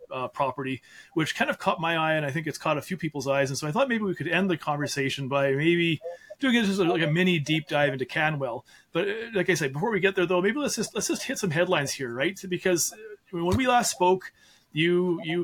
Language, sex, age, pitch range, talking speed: English, male, 30-49, 145-175 Hz, 260 wpm